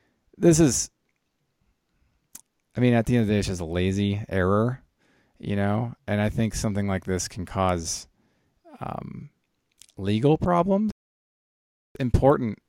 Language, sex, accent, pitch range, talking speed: English, male, American, 90-110 Hz, 135 wpm